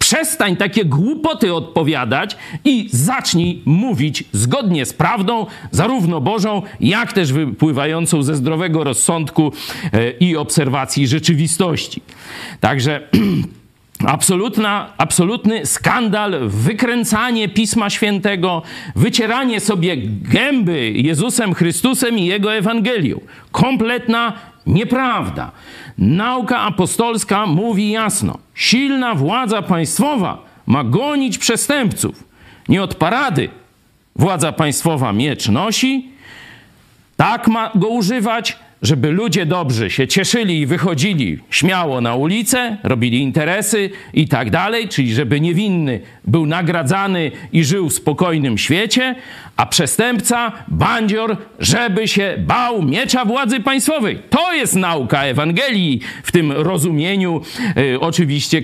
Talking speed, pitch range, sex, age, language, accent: 100 wpm, 145-225 Hz, male, 50-69, Polish, native